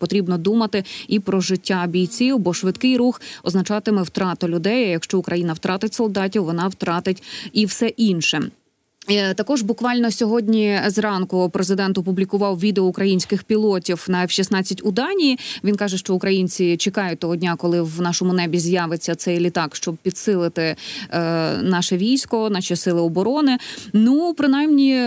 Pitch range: 185-235 Hz